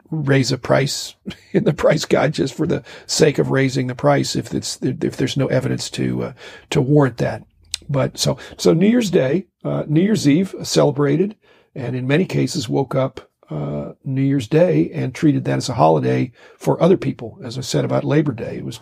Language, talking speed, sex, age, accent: English, 205 wpm, male, 50-69, American